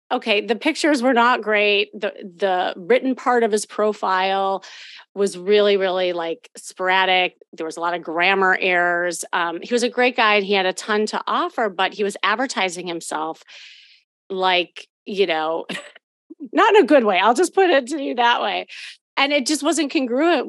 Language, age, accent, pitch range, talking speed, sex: English, 30-49, American, 185-250 Hz, 185 wpm, female